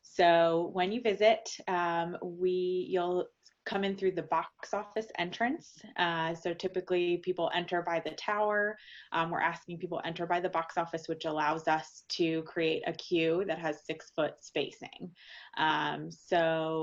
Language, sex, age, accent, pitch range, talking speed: English, female, 20-39, American, 165-185 Hz, 160 wpm